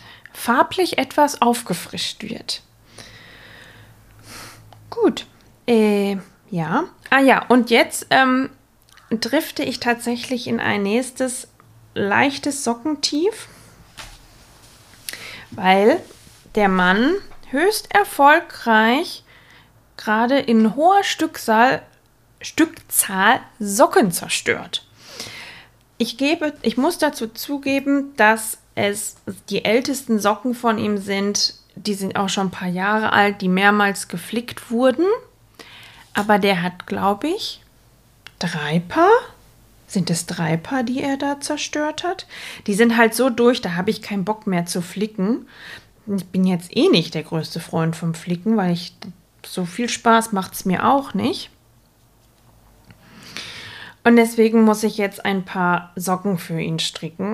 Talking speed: 125 wpm